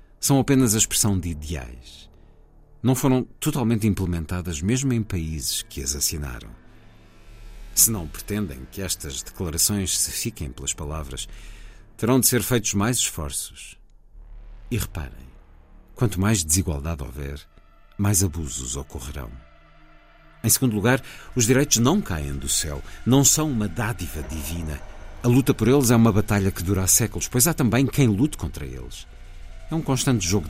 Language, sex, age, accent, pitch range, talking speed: Portuguese, male, 50-69, Portuguese, 75-110 Hz, 150 wpm